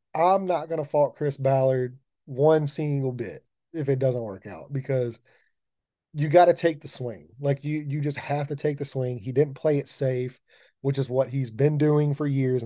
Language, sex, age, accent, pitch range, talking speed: English, male, 30-49, American, 125-150 Hz, 205 wpm